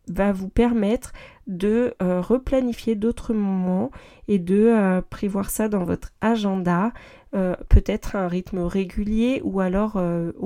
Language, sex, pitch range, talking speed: French, female, 190-230 Hz, 145 wpm